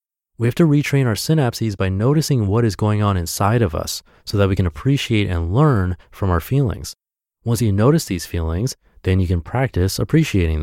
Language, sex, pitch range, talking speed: English, male, 90-120 Hz, 200 wpm